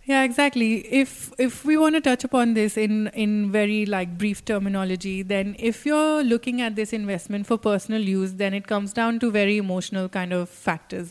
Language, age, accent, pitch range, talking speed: English, 30-49, Indian, 195-230 Hz, 195 wpm